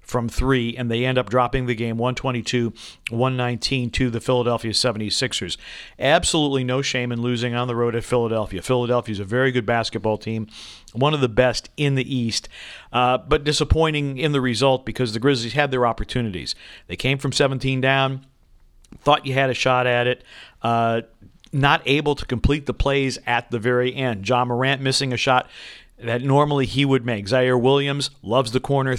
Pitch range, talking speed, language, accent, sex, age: 115-135 Hz, 180 wpm, English, American, male, 50-69